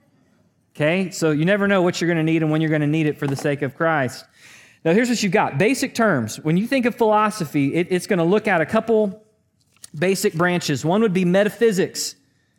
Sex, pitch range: male, 155-205 Hz